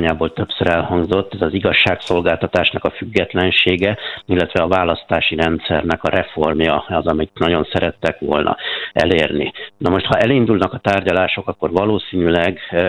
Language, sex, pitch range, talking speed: Hungarian, male, 85-95 Hz, 125 wpm